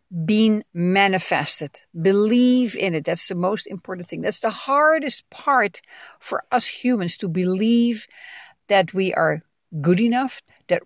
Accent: Dutch